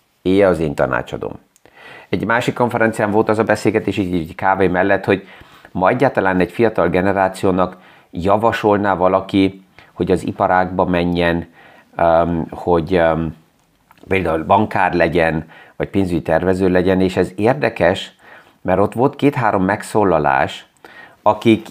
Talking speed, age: 120 wpm, 30-49